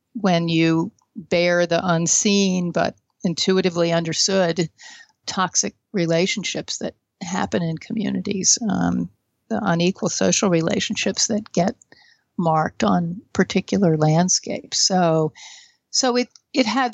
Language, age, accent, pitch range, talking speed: English, 50-69, American, 170-225 Hz, 105 wpm